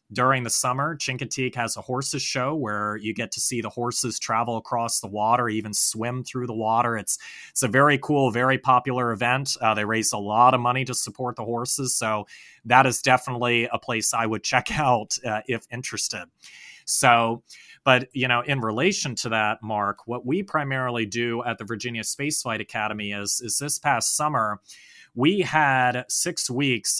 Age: 30-49